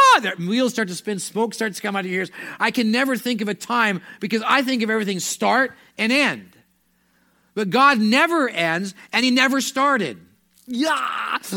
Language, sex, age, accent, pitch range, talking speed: English, male, 40-59, American, 155-220 Hz, 185 wpm